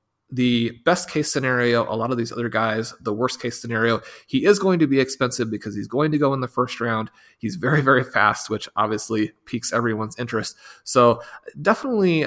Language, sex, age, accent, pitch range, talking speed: English, male, 30-49, American, 110-130 Hz, 195 wpm